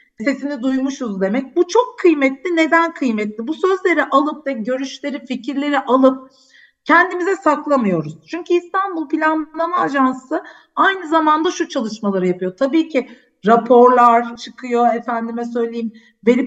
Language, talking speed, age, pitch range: Turkish, 120 wpm, 50-69, 245-315 Hz